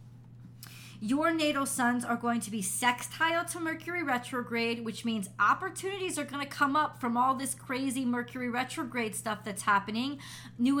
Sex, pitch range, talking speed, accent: female, 210-260 Hz, 160 wpm, American